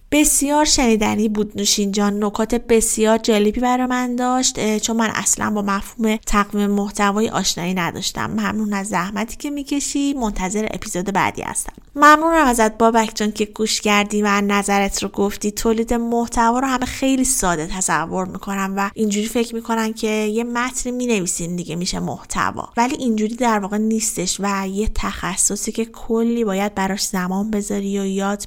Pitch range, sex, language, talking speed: 200-230 Hz, female, Persian, 160 wpm